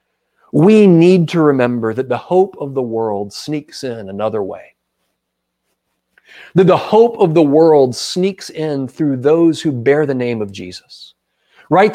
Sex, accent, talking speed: male, American, 155 wpm